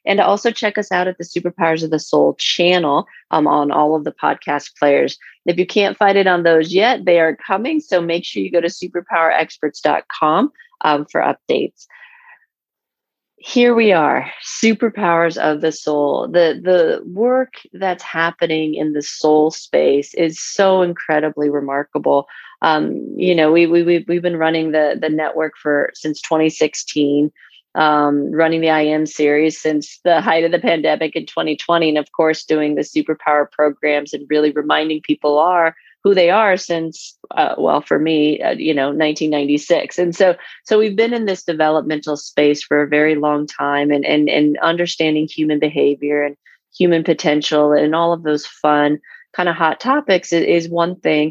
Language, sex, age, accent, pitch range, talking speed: English, female, 30-49, American, 150-180 Hz, 175 wpm